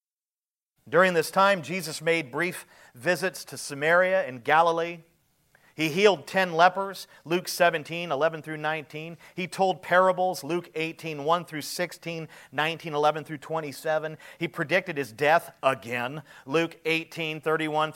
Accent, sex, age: American, male, 40-59